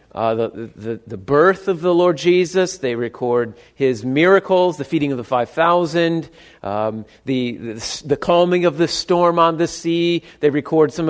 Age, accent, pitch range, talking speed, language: 40-59, American, 130-185 Hz, 170 wpm, English